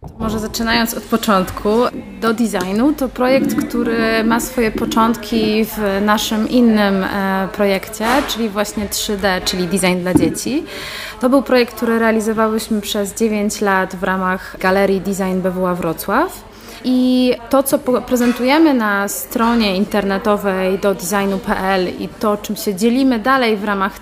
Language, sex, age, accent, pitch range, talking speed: Polish, female, 20-39, native, 200-240 Hz, 130 wpm